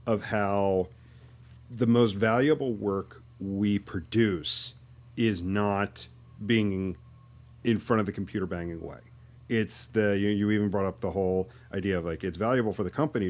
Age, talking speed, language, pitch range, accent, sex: 40-59, 160 wpm, English, 95-115 Hz, American, male